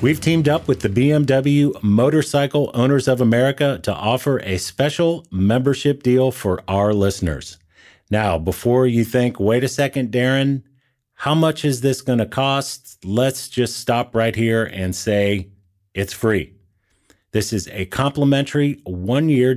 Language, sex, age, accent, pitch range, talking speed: English, male, 40-59, American, 100-130 Hz, 145 wpm